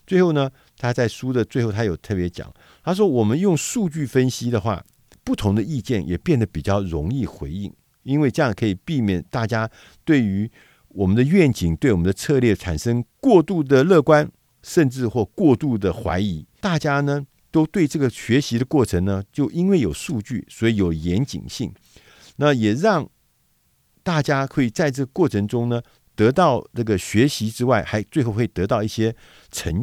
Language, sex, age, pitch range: Chinese, male, 50-69, 100-135 Hz